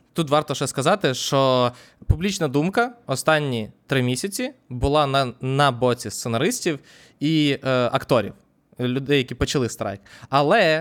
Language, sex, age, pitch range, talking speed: Ukrainian, male, 20-39, 130-180 Hz, 130 wpm